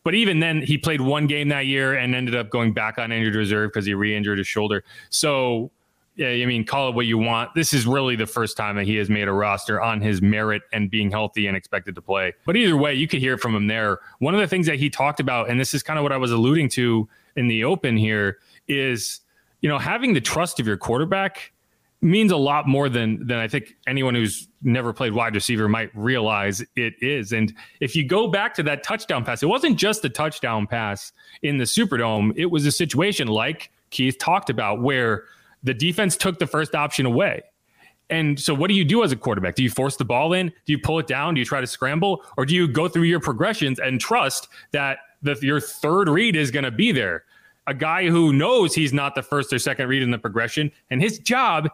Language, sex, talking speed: English, male, 240 wpm